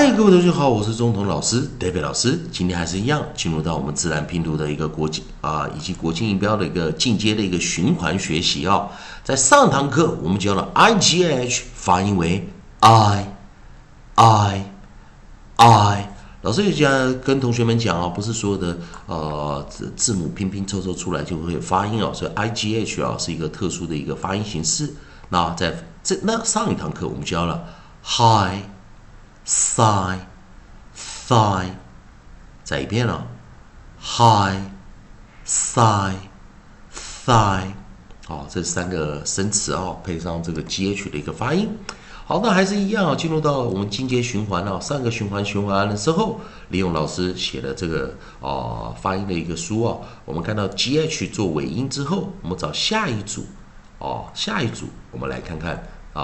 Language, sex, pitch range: Chinese, male, 85-120 Hz